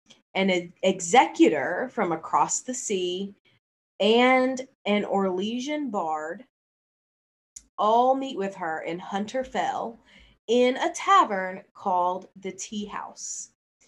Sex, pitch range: female, 185-255 Hz